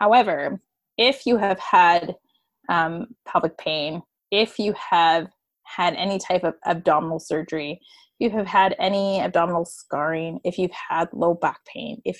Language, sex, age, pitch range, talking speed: English, female, 20-39, 170-215 Hz, 150 wpm